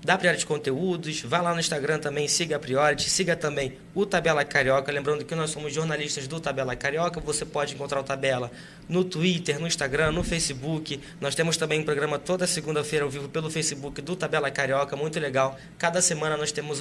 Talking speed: 195 wpm